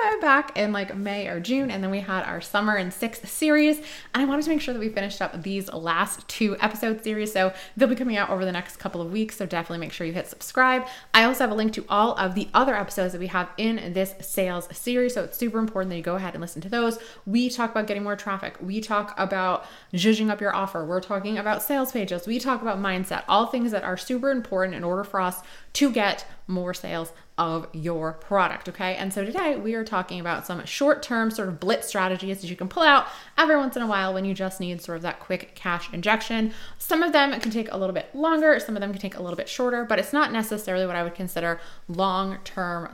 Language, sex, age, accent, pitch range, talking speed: English, female, 20-39, American, 180-225 Hz, 250 wpm